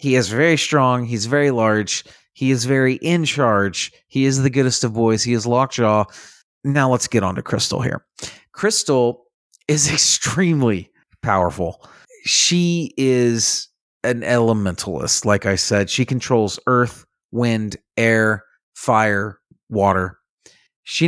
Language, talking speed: English, 135 wpm